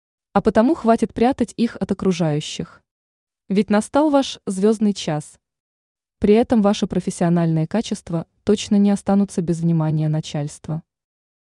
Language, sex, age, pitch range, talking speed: Russian, female, 20-39, 170-220 Hz, 120 wpm